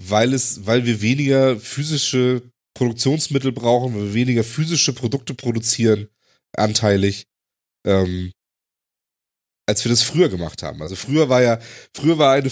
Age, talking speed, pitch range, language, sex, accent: 30-49, 140 wpm, 105-130 Hz, German, male, German